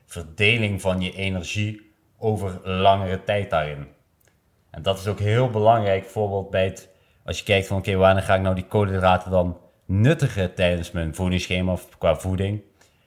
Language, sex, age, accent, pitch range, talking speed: Dutch, male, 30-49, Dutch, 90-105 Hz, 170 wpm